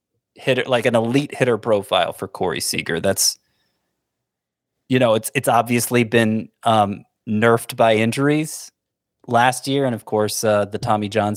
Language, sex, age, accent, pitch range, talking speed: English, male, 30-49, American, 105-130 Hz, 155 wpm